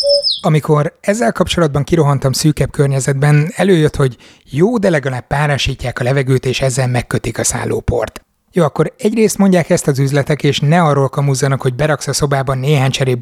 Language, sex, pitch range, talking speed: Hungarian, male, 135-160 Hz, 165 wpm